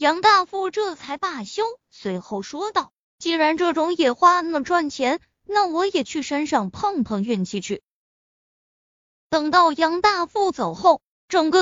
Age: 20-39